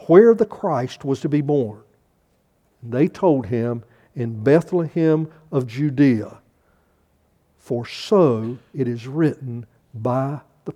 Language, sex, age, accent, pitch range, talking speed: English, male, 60-79, American, 120-160 Hz, 115 wpm